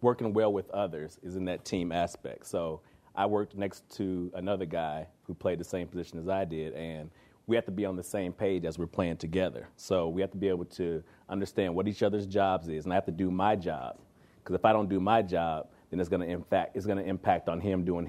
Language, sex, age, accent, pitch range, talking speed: English, male, 30-49, American, 90-100 Hz, 240 wpm